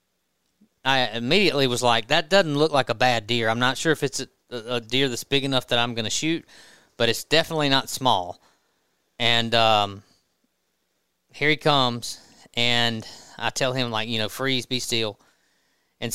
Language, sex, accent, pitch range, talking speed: English, male, American, 115-145 Hz, 180 wpm